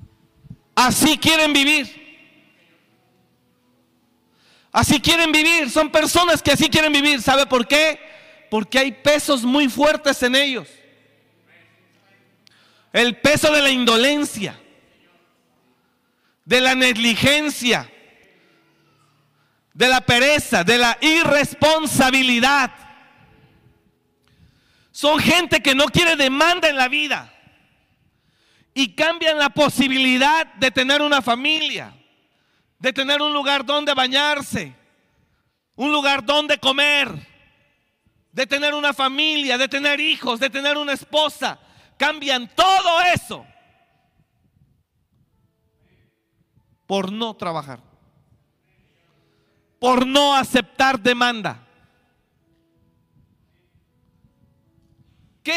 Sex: male